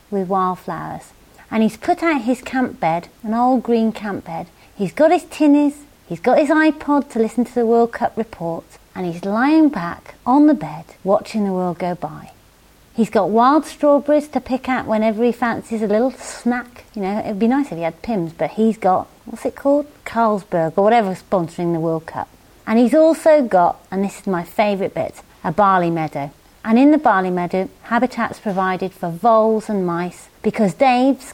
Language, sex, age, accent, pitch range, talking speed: English, female, 30-49, British, 190-255 Hz, 195 wpm